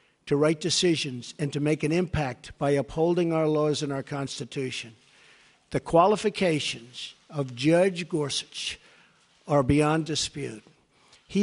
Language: English